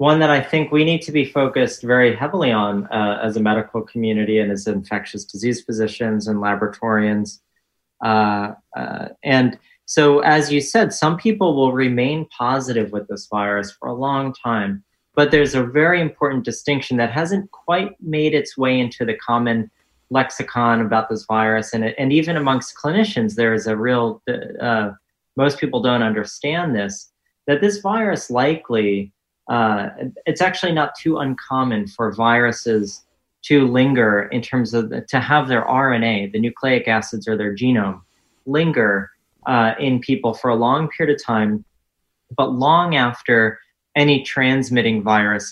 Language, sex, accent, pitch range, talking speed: English, male, American, 110-140 Hz, 160 wpm